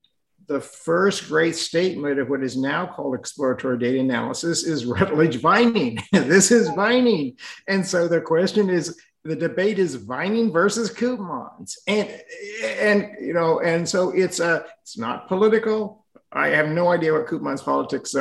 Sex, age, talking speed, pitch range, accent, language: male, 50-69, 155 wpm, 150-205 Hz, American, English